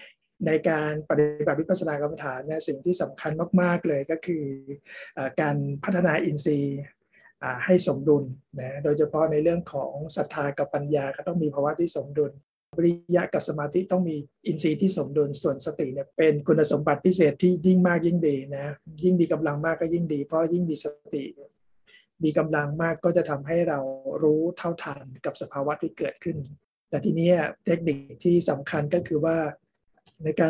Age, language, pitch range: 60-79, Thai, 145-170 Hz